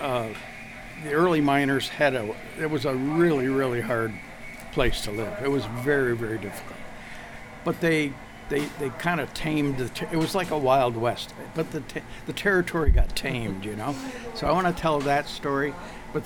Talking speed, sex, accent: 190 wpm, male, American